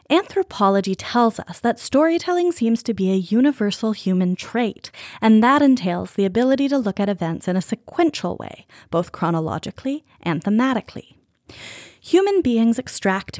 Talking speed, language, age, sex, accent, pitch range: 145 wpm, English, 20-39, female, American, 180-260 Hz